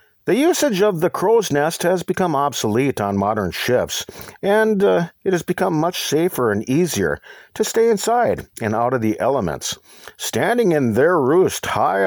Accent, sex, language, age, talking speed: American, male, English, 50-69, 170 wpm